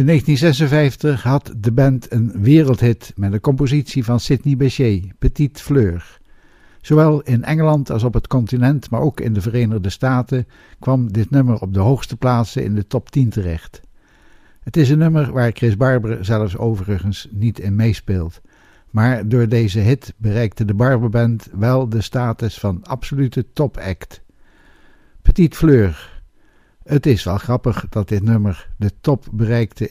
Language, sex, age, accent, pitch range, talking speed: Dutch, male, 60-79, Dutch, 105-135 Hz, 155 wpm